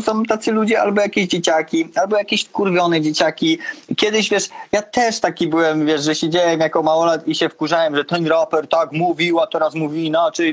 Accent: native